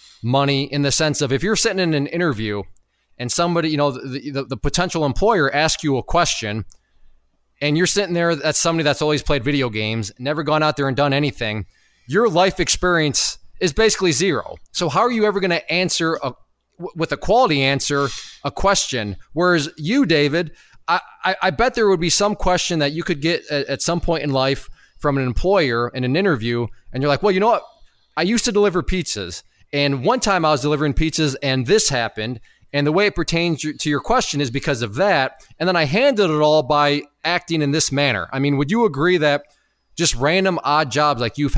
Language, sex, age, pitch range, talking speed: English, male, 20-39, 135-175 Hz, 210 wpm